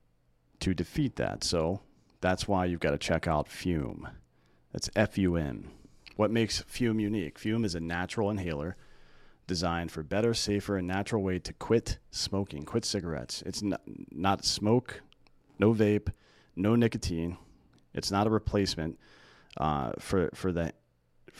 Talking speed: 145 wpm